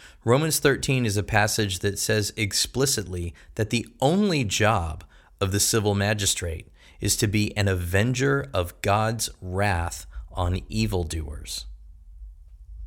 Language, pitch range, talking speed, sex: English, 85-115 Hz, 120 wpm, male